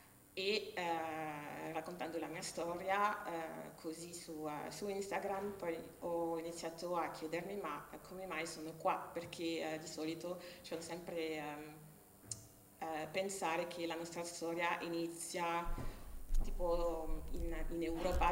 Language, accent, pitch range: Italian, native, 160-175 Hz